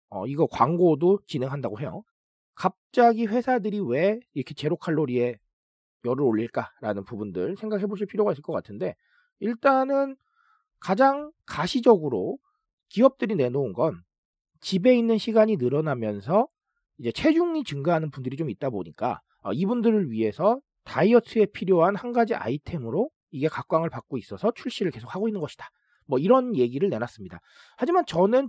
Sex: male